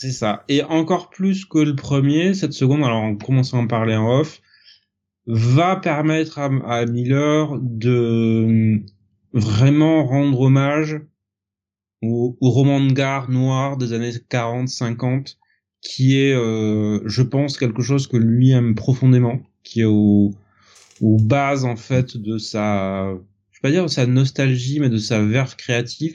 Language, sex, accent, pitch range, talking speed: French, male, French, 110-135 Hz, 155 wpm